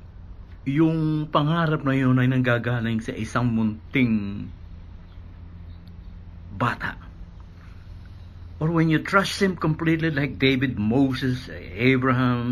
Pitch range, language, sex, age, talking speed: 85-125 Hz, Filipino, male, 60-79, 95 wpm